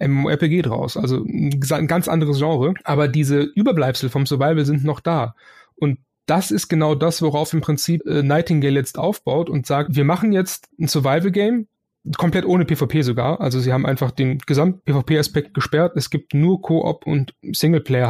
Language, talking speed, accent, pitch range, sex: German, 170 wpm, German, 140-165 Hz, male